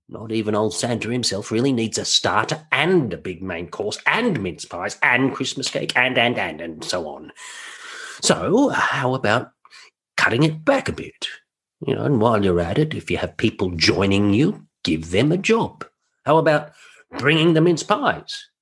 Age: 50-69